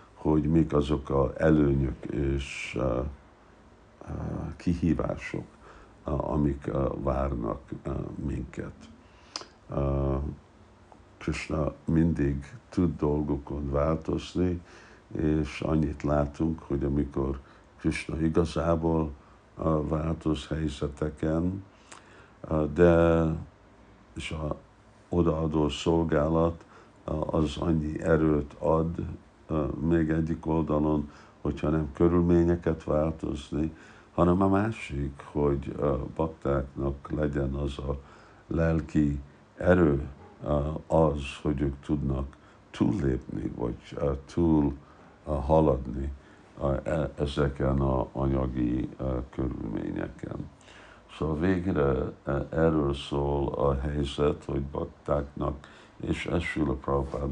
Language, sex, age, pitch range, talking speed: Hungarian, male, 60-79, 70-80 Hz, 90 wpm